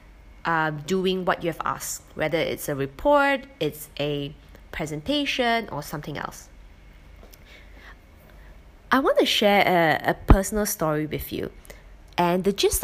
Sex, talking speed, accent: female, 135 wpm, Malaysian